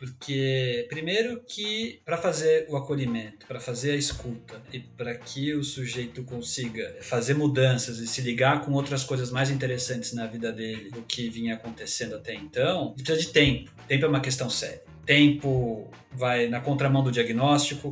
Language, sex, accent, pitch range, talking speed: Portuguese, male, Brazilian, 120-145 Hz, 165 wpm